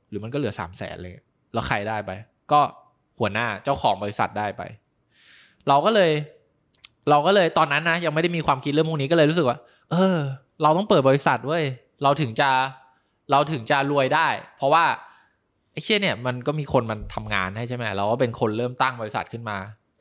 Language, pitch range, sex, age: Thai, 110-145 Hz, male, 20-39